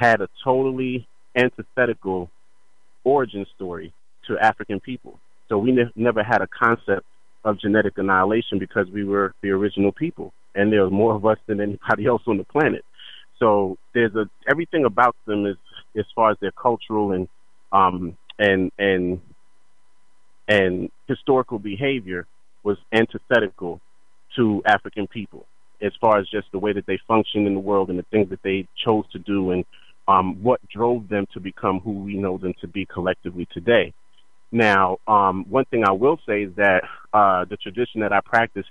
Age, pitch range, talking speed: 30-49, 95-110 Hz, 170 wpm